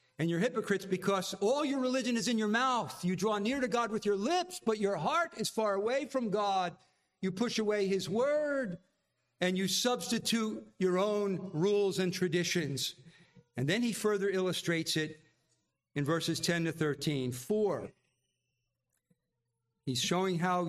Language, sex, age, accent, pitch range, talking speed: English, male, 50-69, American, 150-195 Hz, 160 wpm